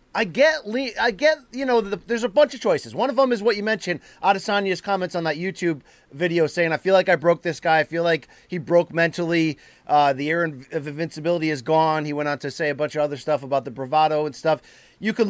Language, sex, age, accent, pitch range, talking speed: English, male, 30-49, American, 160-200 Hz, 245 wpm